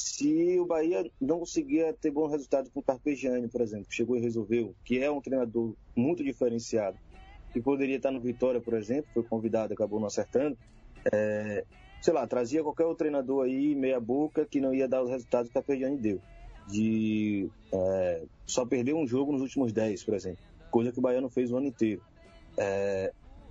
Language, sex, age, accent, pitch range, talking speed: Portuguese, male, 20-39, Brazilian, 115-155 Hz, 195 wpm